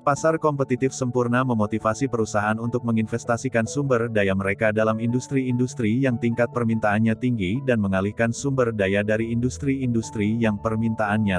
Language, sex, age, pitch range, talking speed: Indonesian, male, 30-49, 105-125 Hz, 125 wpm